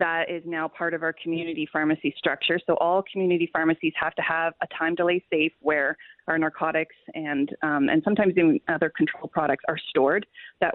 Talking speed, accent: 190 wpm, American